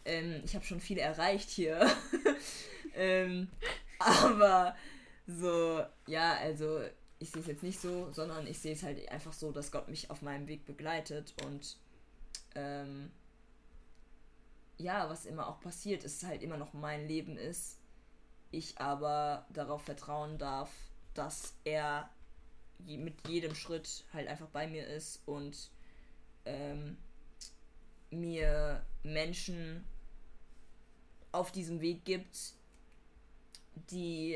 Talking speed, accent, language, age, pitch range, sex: 125 wpm, German, German, 20-39, 150-170 Hz, female